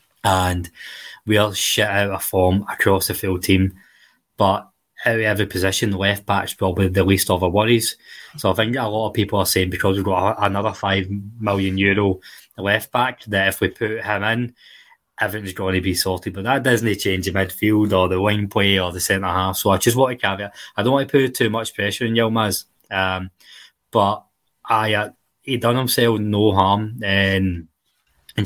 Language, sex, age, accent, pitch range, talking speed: English, male, 20-39, British, 95-115 Hz, 190 wpm